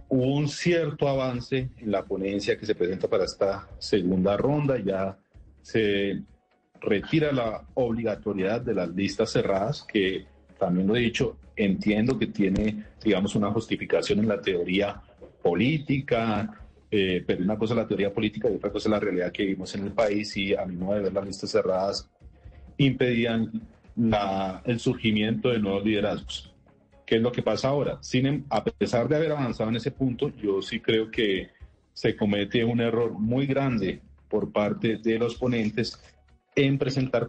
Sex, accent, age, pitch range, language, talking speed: male, Colombian, 40-59, 100-130 Hz, Spanish, 165 wpm